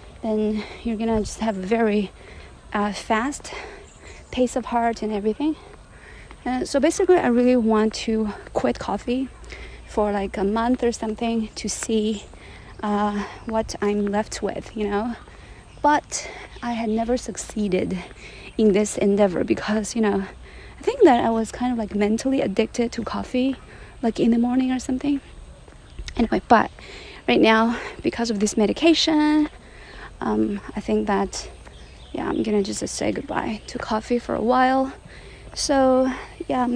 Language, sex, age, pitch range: Chinese, female, 30-49, 210-250 Hz